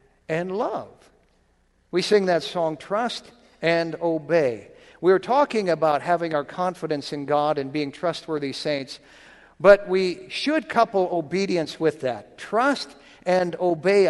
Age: 50-69